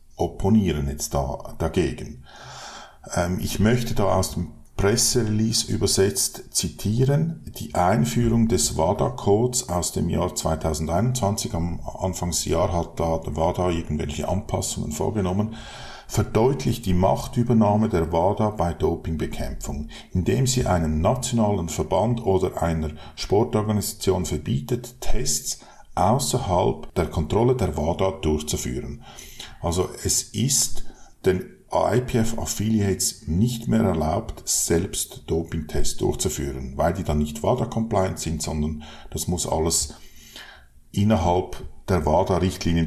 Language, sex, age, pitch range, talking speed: German, male, 50-69, 80-110 Hz, 110 wpm